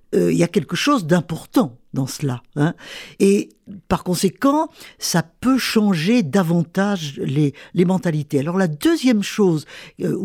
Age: 50-69